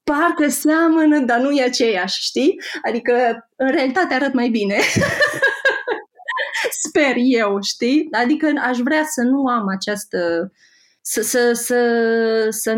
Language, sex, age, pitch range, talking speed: Romanian, female, 20-39, 185-260 Hz, 115 wpm